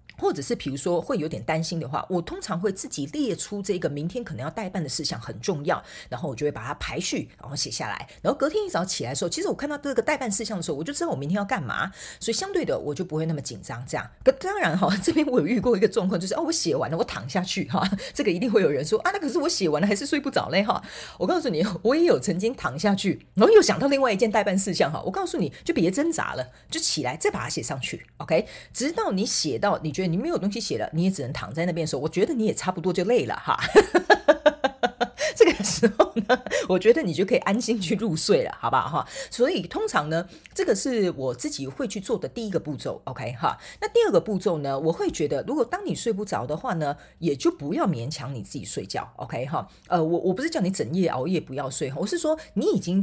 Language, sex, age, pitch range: Chinese, female, 40-59, 165-255 Hz